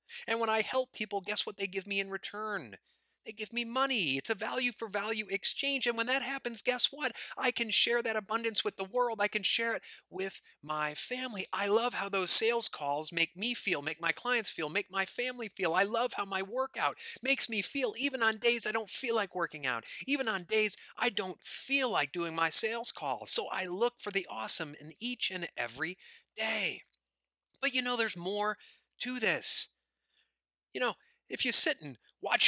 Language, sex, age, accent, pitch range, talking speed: English, male, 30-49, American, 185-245 Hz, 210 wpm